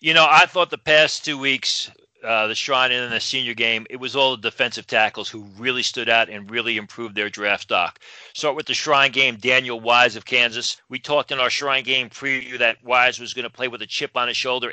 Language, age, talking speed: English, 40-59, 240 wpm